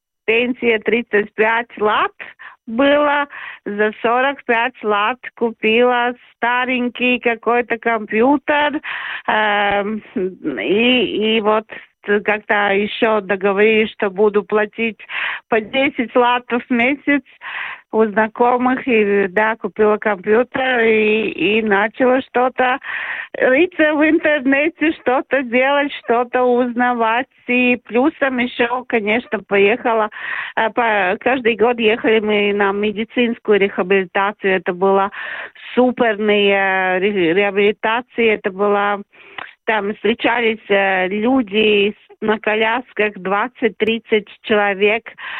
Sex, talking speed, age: female, 90 wpm, 50-69